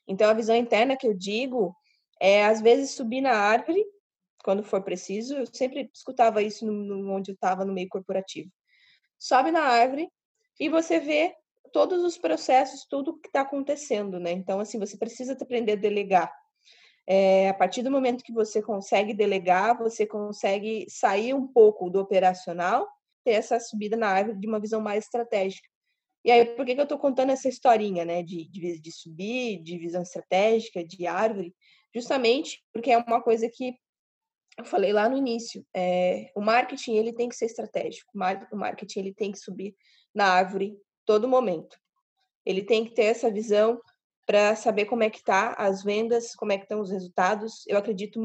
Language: Portuguese